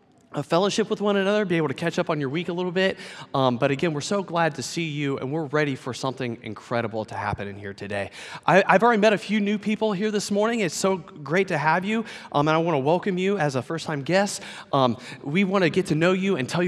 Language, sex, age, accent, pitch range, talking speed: English, male, 30-49, American, 130-180 Hz, 265 wpm